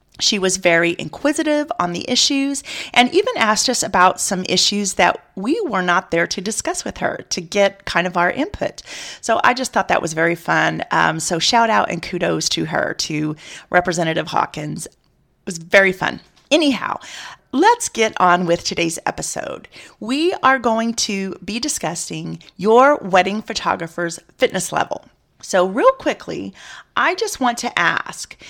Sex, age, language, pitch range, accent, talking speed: female, 40-59, English, 175-260 Hz, American, 165 wpm